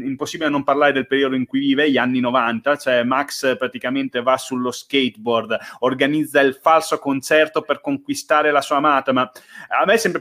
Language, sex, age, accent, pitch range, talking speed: Italian, male, 30-49, native, 125-185 Hz, 180 wpm